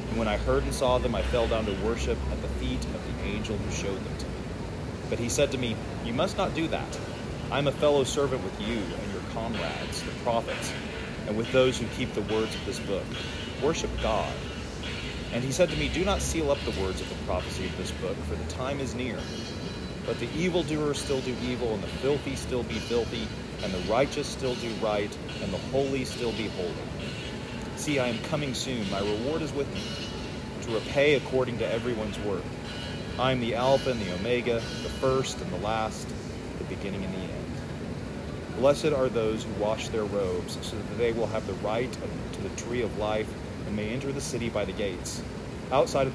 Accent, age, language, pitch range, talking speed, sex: American, 30-49, English, 95-130 Hz, 215 wpm, male